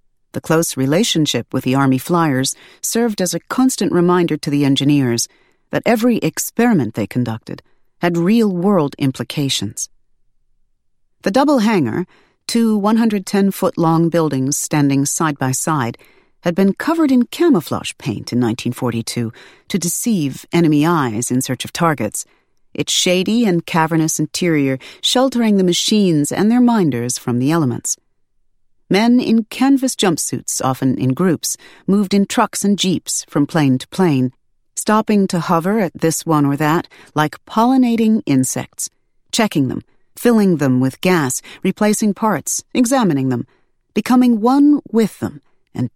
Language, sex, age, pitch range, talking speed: English, female, 40-59, 135-200 Hz, 135 wpm